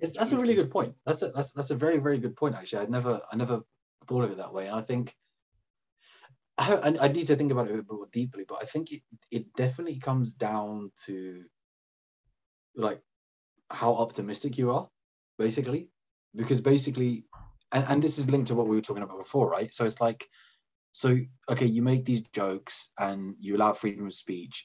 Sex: male